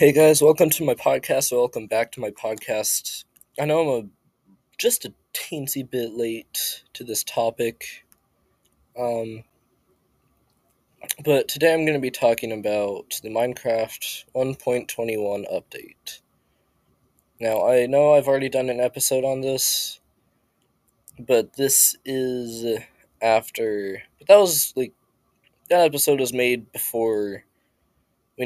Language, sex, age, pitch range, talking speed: English, male, 20-39, 110-135 Hz, 125 wpm